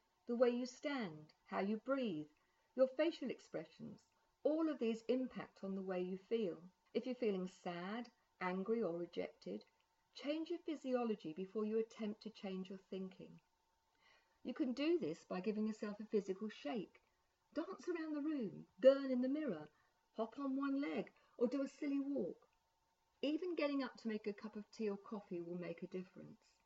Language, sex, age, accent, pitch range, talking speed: English, female, 50-69, British, 190-270 Hz, 175 wpm